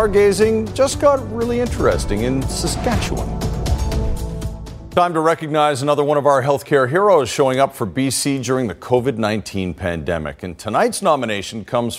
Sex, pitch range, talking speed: male, 120-175 Hz, 140 wpm